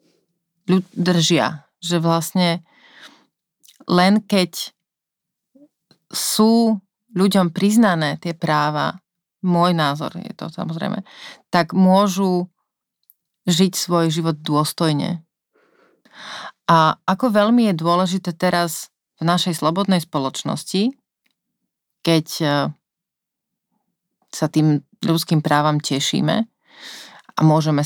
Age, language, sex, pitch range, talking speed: 30-49, Slovak, female, 155-195 Hz, 85 wpm